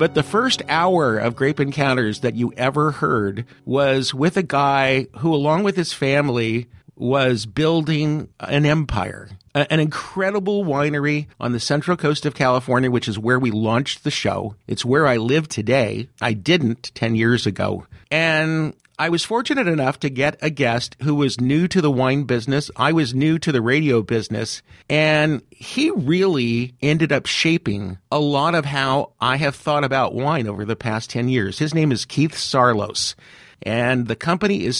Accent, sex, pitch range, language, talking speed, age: American, male, 115-150 Hz, English, 175 wpm, 50-69